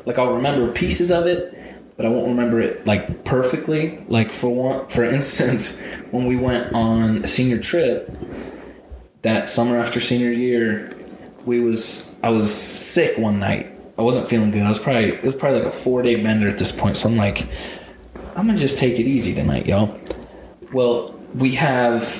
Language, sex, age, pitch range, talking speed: English, male, 20-39, 105-125 Hz, 185 wpm